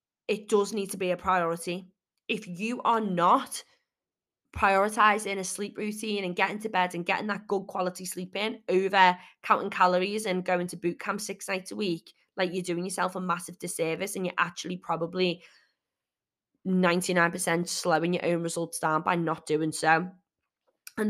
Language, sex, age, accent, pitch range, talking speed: English, female, 20-39, British, 175-200 Hz, 170 wpm